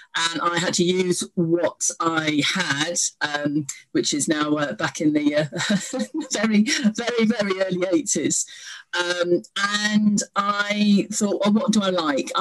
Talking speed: 145 wpm